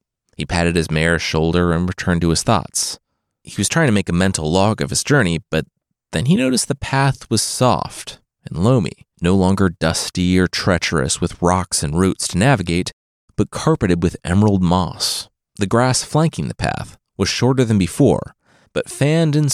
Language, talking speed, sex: English, 180 wpm, male